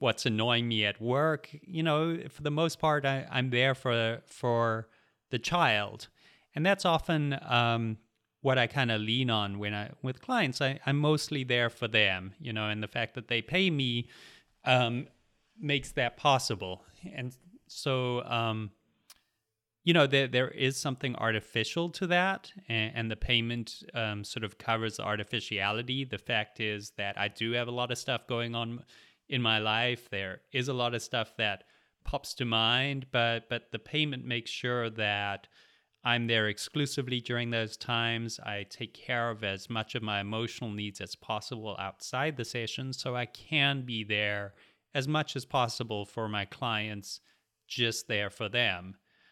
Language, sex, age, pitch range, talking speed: English, male, 30-49, 110-135 Hz, 175 wpm